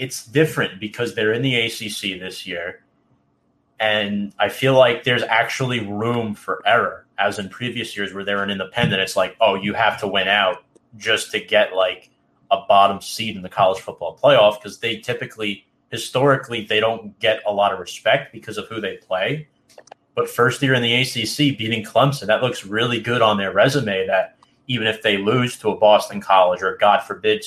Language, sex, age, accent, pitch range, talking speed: English, male, 30-49, American, 100-125 Hz, 195 wpm